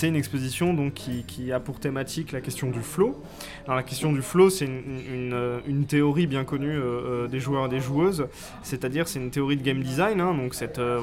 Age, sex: 20-39, male